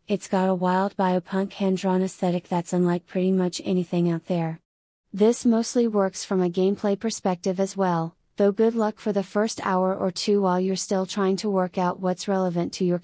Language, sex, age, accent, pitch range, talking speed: English, female, 30-49, American, 175-200 Hz, 200 wpm